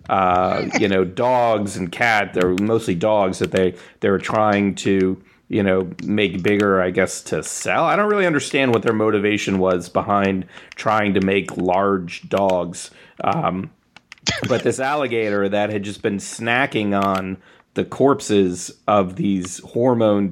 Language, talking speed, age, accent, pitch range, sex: English, 155 wpm, 30-49, American, 95-115 Hz, male